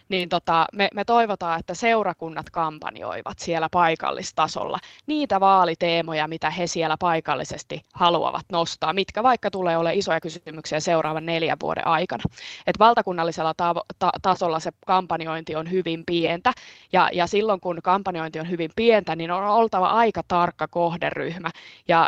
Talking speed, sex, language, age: 145 wpm, female, Finnish, 20-39